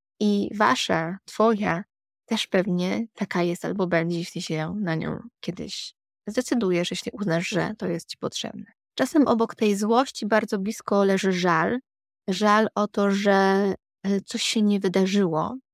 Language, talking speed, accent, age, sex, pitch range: Polish, 145 wpm, native, 20-39, female, 180-215 Hz